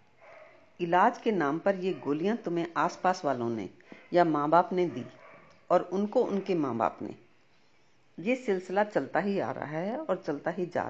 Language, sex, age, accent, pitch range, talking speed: Hindi, female, 50-69, native, 155-200 Hz, 175 wpm